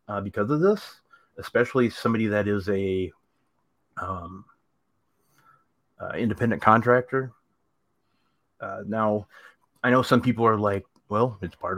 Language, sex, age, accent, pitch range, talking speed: English, male, 30-49, American, 100-120 Hz, 120 wpm